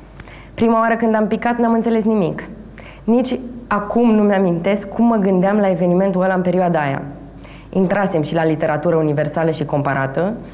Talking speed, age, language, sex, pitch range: 160 wpm, 20-39, Romanian, female, 160-200 Hz